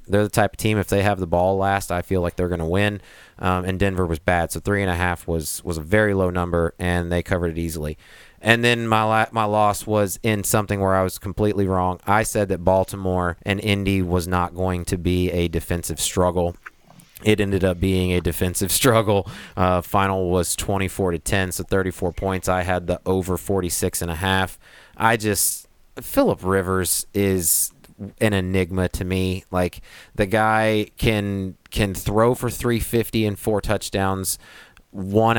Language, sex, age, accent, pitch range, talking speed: English, male, 30-49, American, 90-100 Hz, 180 wpm